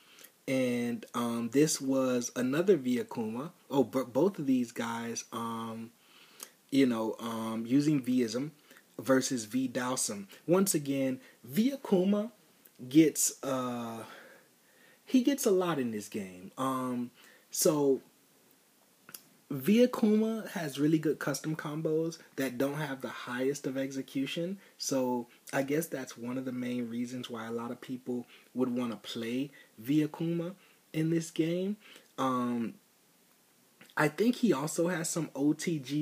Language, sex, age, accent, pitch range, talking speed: English, male, 30-49, American, 120-155 Hz, 135 wpm